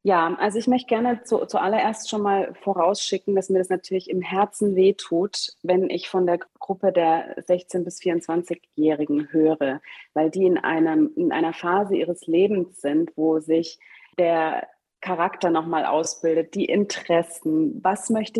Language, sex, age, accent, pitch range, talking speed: German, female, 30-49, German, 165-215 Hz, 145 wpm